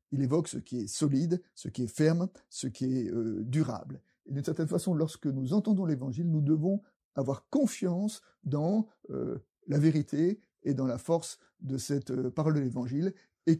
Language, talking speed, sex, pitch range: French, 185 wpm, male, 135-175 Hz